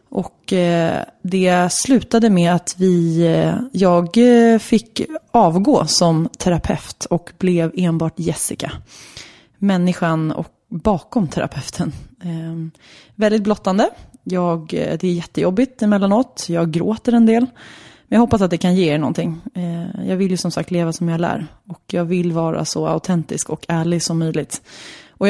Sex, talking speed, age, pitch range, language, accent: female, 145 wpm, 20-39, 165-205 Hz, English, Swedish